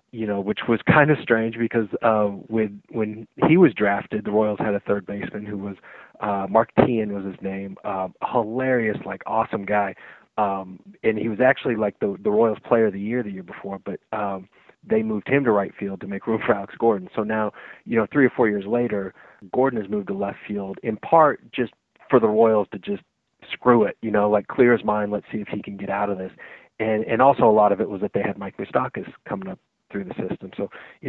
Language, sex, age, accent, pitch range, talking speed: English, male, 30-49, American, 100-115 Hz, 235 wpm